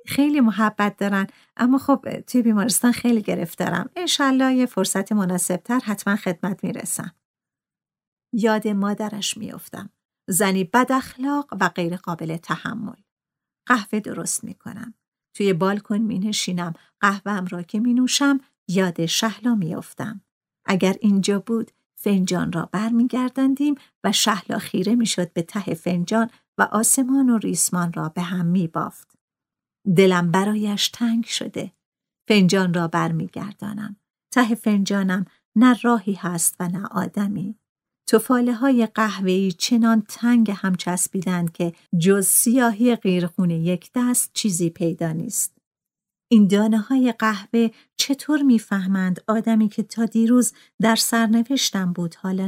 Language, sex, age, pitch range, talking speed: Persian, female, 50-69, 185-230 Hz, 130 wpm